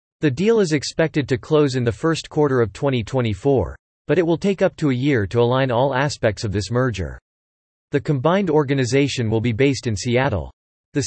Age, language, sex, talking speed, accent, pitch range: 40-59, English, male, 195 wpm, American, 110-150 Hz